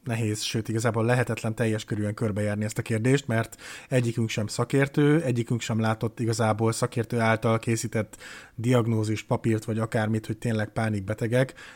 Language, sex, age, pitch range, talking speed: Hungarian, male, 30-49, 115-135 Hz, 145 wpm